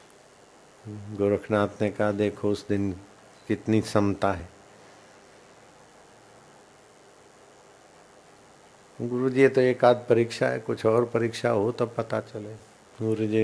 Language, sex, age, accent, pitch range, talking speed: Hindi, male, 60-79, native, 100-120 Hz, 105 wpm